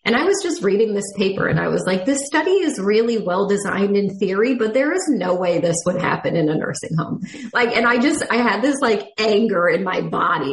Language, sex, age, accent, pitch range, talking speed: English, female, 20-39, American, 200-260 Hz, 245 wpm